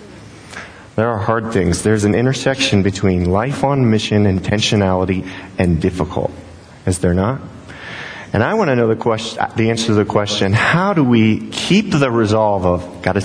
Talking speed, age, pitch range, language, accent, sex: 170 wpm, 30-49, 95-125 Hz, English, American, male